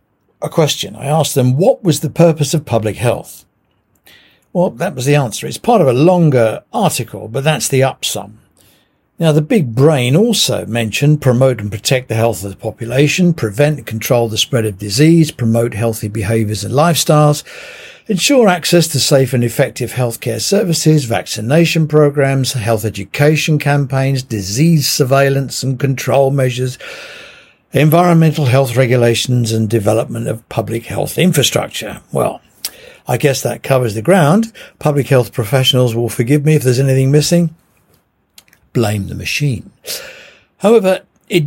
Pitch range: 115-155 Hz